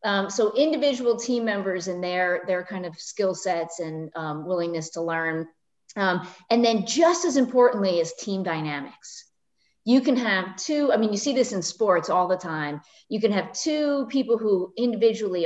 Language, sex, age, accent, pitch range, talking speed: English, female, 30-49, American, 175-235 Hz, 185 wpm